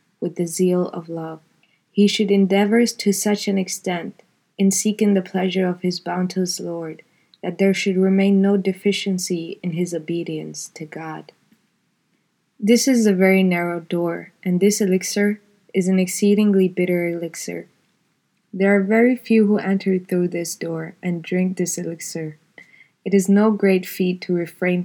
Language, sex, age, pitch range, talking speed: English, female, 20-39, 170-195 Hz, 155 wpm